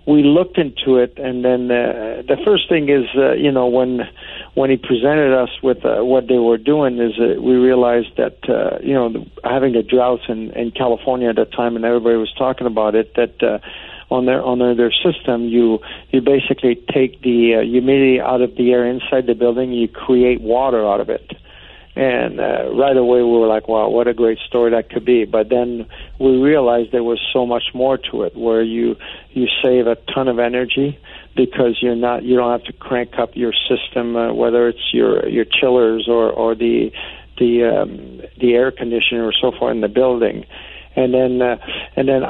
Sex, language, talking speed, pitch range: male, English, 205 wpm, 120-130 Hz